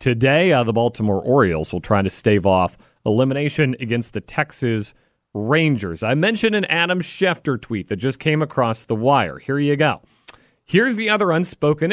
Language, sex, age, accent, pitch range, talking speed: English, male, 40-59, American, 125-175 Hz, 170 wpm